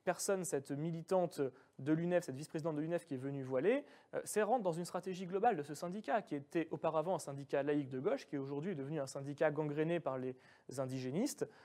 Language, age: French, 20-39